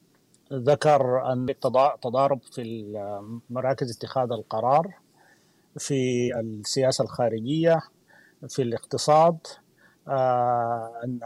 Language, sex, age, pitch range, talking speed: Arabic, male, 30-49, 125-165 Hz, 70 wpm